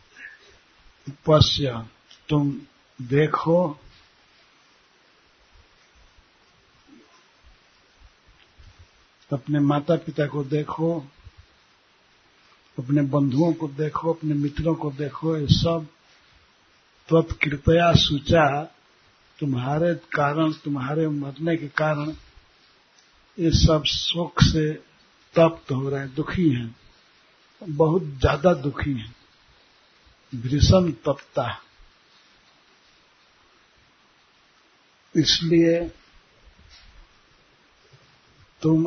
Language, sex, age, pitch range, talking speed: Hindi, male, 50-69, 140-160 Hz, 70 wpm